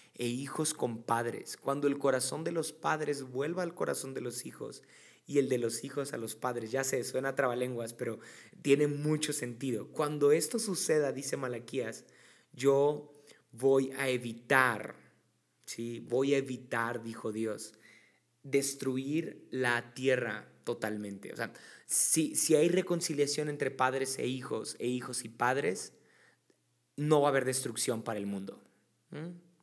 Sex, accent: male, Mexican